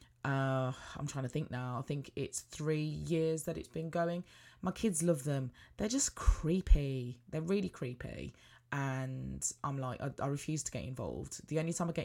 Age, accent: 20-39, British